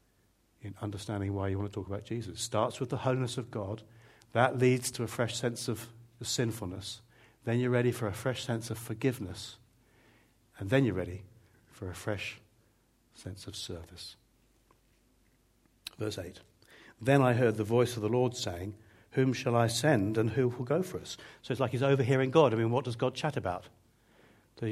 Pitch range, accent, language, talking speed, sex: 110-140 Hz, British, English, 190 wpm, male